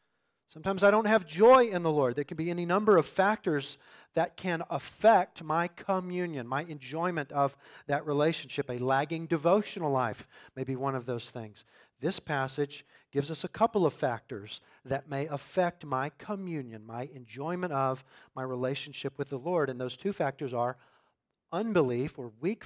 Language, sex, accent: English, male, American